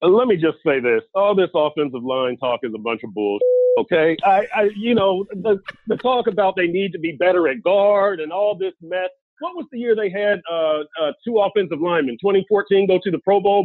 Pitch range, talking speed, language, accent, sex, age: 170-215 Hz, 235 wpm, English, American, male, 40-59